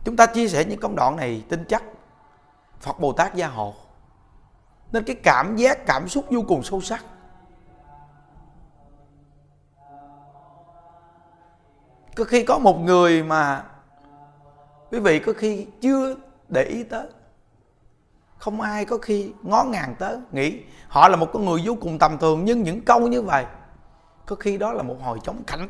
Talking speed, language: 160 wpm, Vietnamese